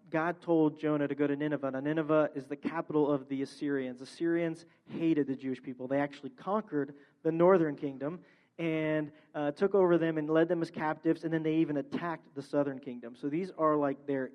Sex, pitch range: male, 145-165 Hz